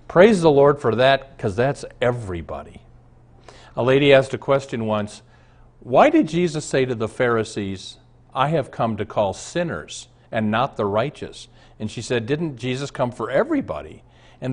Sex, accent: male, American